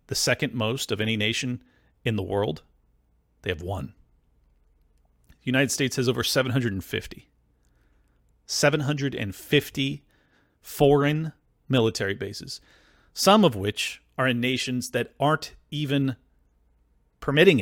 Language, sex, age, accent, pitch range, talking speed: English, male, 40-59, American, 105-140 Hz, 110 wpm